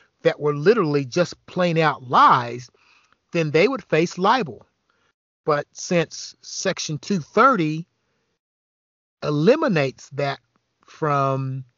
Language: English